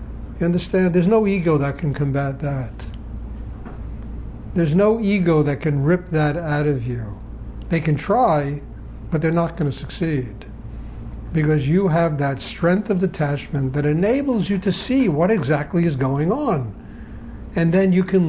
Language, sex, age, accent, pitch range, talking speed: English, male, 60-79, American, 140-185 Hz, 160 wpm